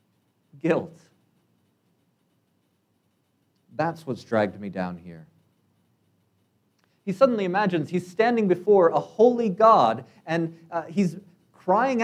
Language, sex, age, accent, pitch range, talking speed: English, male, 40-59, American, 120-185 Hz, 100 wpm